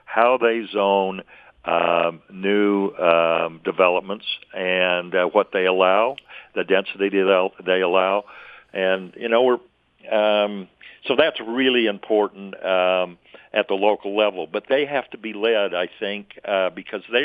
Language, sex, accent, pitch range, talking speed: English, male, American, 90-105 Hz, 145 wpm